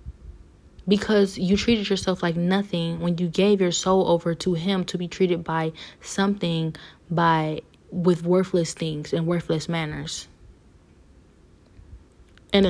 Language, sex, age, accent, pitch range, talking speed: English, female, 20-39, American, 160-185 Hz, 130 wpm